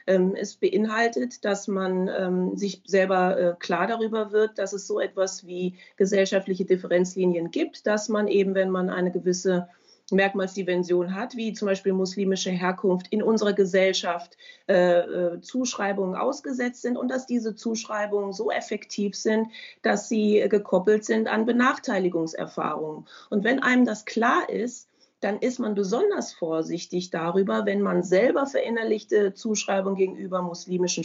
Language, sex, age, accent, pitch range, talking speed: English, female, 30-49, German, 185-235 Hz, 135 wpm